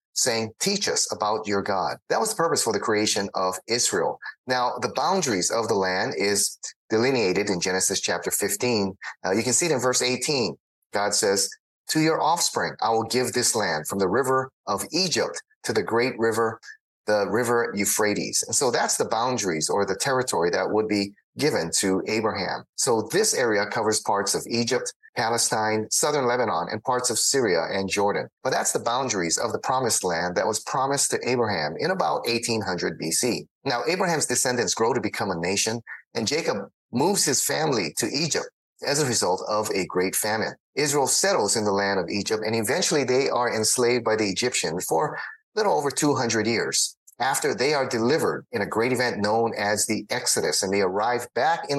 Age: 30-49